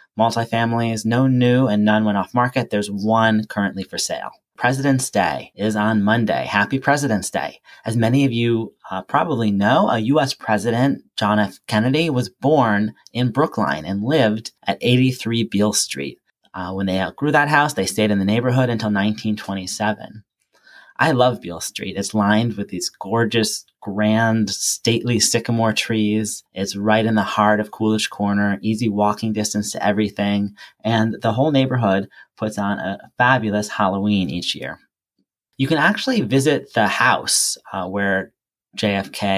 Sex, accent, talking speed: male, American, 160 wpm